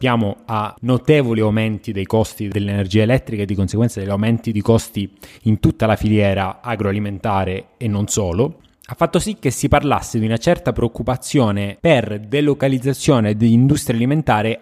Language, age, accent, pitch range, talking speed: Italian, 20-39, native, 110-135 Hz, 150 wpm